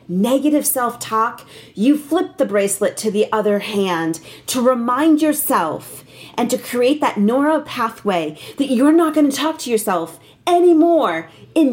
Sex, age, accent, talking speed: female, 40-59, American, 150 wpm